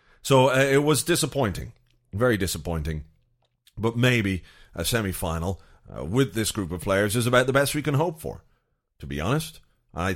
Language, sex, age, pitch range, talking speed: English, male, 30-49, 90-120 Hz, 170 wpm